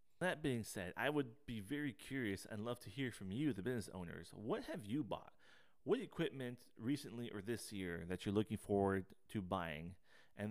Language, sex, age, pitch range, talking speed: English, male, 30-49, 90-110 Hz, 195 wpm